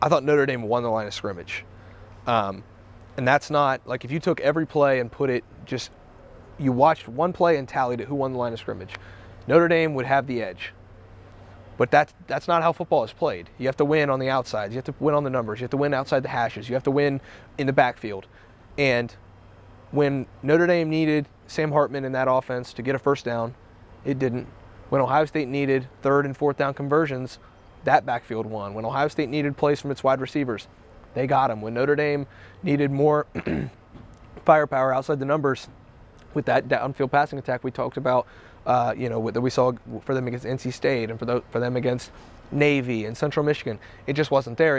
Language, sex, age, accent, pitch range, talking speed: English, male, 30-49, American, 115-145 Hz, 215 wpm